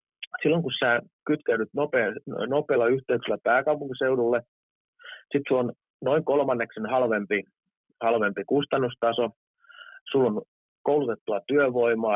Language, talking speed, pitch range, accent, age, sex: English, 100 wpm, 115-175 Hz, Finnish, 30-49, male